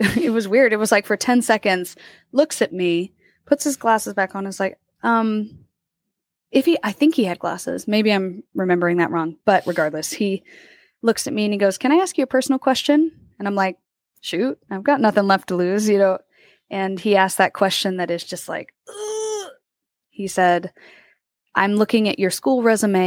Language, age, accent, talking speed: English, 20-39, American, 200 wpm